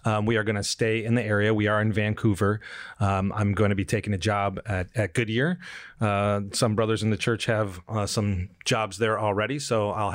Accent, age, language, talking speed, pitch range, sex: American, 30-49, English, 225 wpm, 100-115 Hz, male